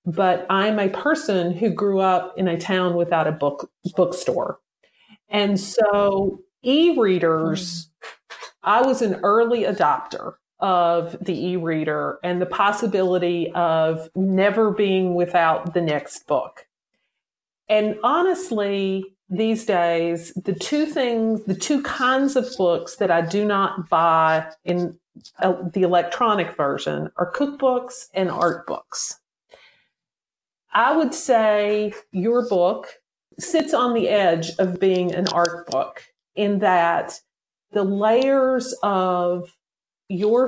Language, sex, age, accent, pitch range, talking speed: English, female, 40-59, American, 175-230 Hz, 120 wpm